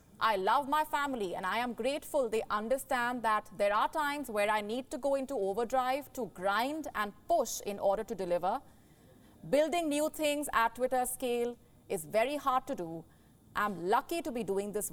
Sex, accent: female, Indian